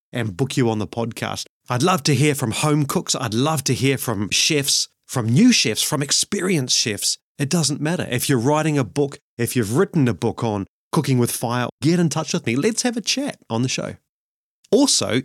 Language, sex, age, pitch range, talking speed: English, male, 30-49, 120-150 Hz, 215 wpm